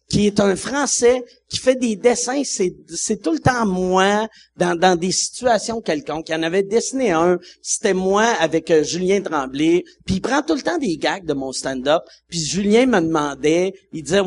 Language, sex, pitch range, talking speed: French, male, 165-230 Hz, 200 wpm